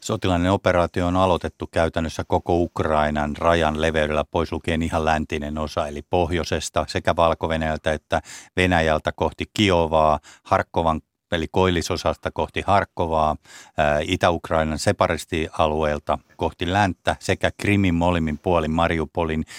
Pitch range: 75-90 Hz